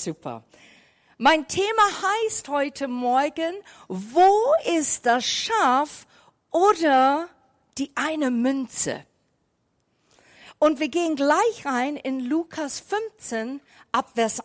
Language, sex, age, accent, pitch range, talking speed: German, female, 50-69, German, 220-305 Hz, 95 wpm